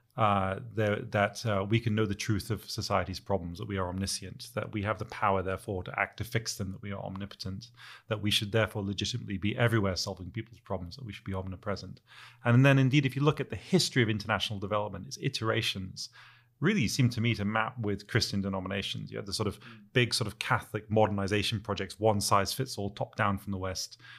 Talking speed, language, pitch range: 210 wpm, English, 100-120 Hz